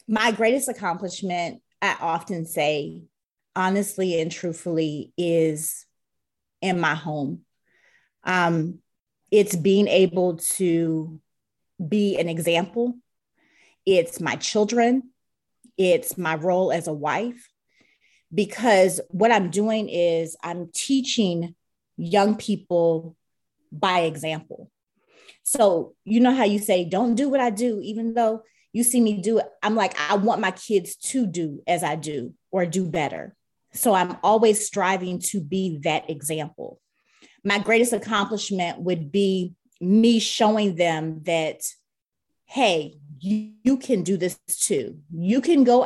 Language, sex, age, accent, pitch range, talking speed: English, female, 30-49, American, 170-225 Hz, 130 wpm